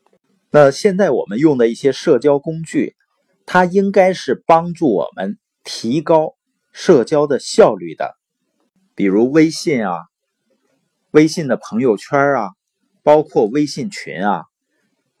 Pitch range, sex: 125-195 Hz, male